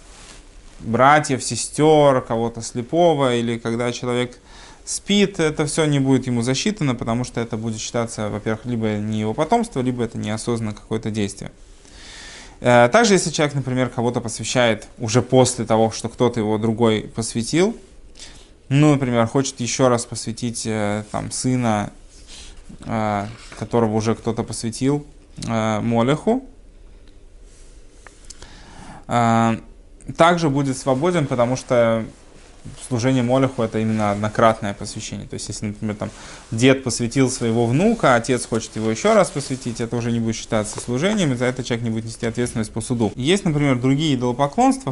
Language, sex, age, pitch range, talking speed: Russian, male, 20-39, 110-135 Hz, 135 wpm